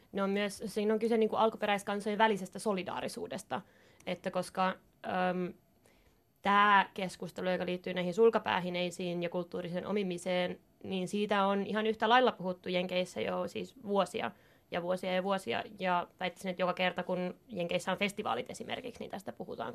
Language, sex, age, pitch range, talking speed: Finnish, female, 20-39, 180-205 Hz, 150 wpm